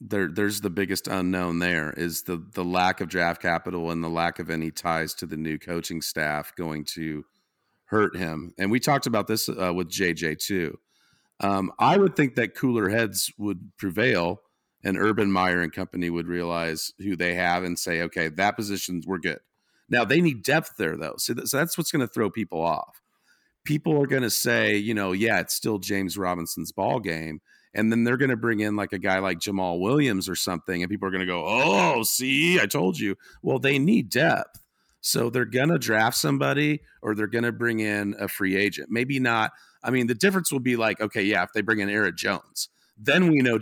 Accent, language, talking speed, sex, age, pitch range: American, English, 215 wpm, male, 40-59, 90-115 Hz